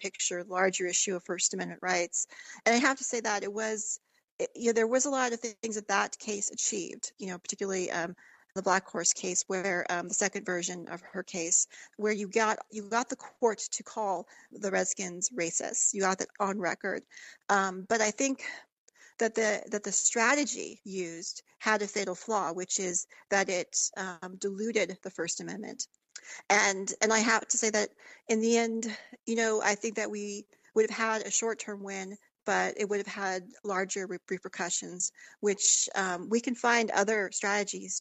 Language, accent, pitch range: English, American, 185-220 Hz